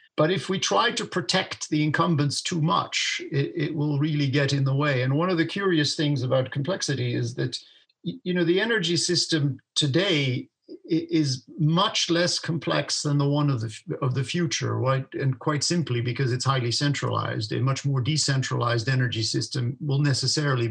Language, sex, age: English, male, 50-69